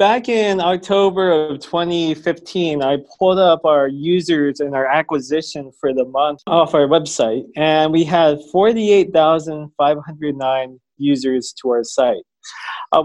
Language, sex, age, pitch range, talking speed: English, male, 20-39, 145-185 Hz, 130 wpm